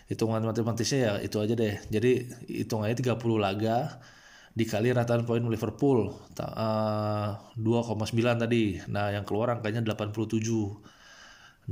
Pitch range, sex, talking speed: 110-125 Hz, male, 110 wpm